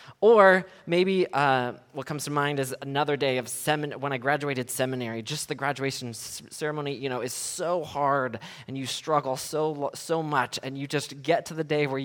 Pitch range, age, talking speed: 125-160 Hz, 20-39, 195 wpm